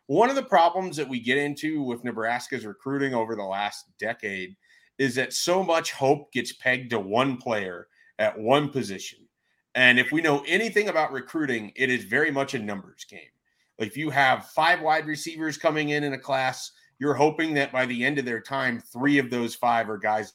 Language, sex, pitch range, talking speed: English, male, 115-150 Hz, 200 wpm